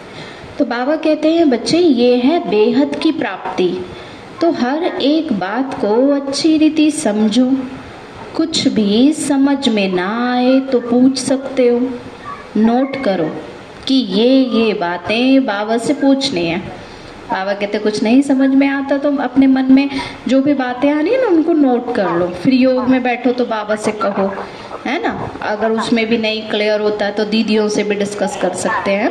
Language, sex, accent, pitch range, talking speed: Hindi, female, native, 215-280 Hz, 170 wpm